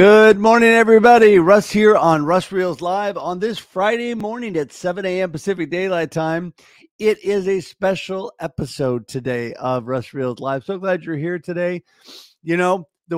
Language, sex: English, male